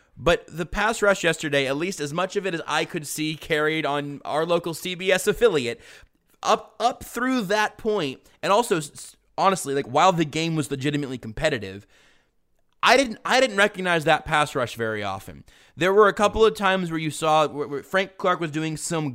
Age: 20-39